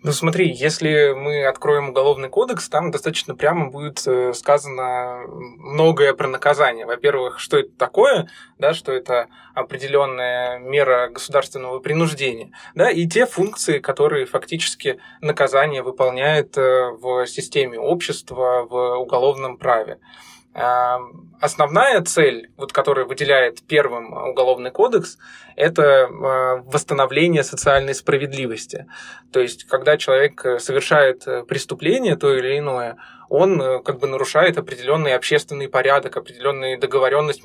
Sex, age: male, 20-39